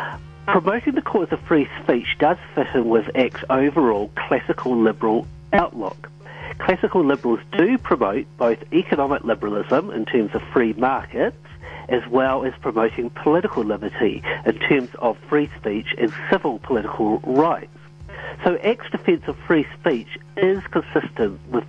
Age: 50-69